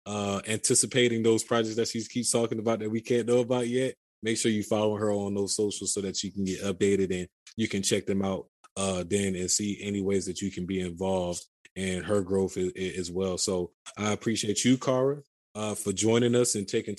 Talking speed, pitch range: 230 wpm, 100-115 Hz